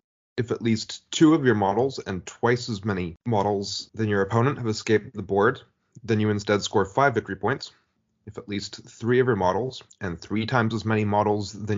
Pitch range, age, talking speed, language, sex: 100-120 Hz, 30-49, 205 wpm, English, male